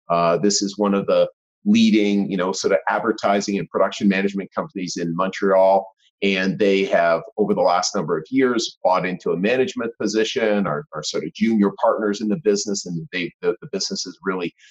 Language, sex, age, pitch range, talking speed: English, male, 40-59, 95-120 Hz, 195 wpm